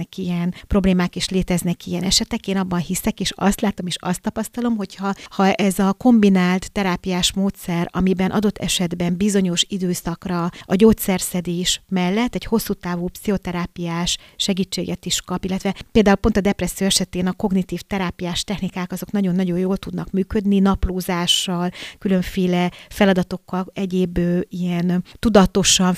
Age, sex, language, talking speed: 40-59, female, Hungarian, 130 wpm